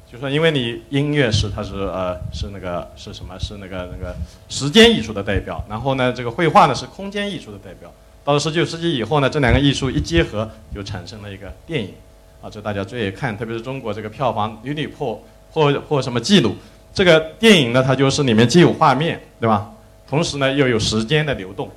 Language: Chinese